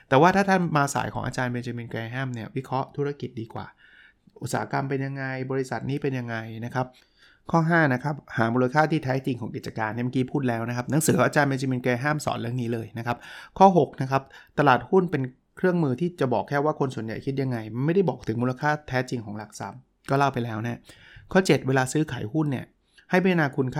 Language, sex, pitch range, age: Thai, male, 120-145 Hz, 20-39